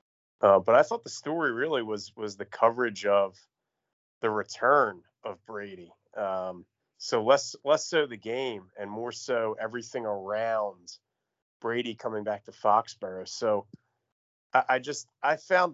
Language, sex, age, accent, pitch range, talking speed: English, male, 30-49, American, 110-145 Hz, 150 wpm